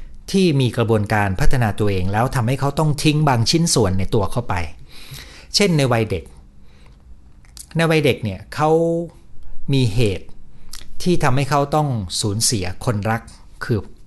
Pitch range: 95-135 Hz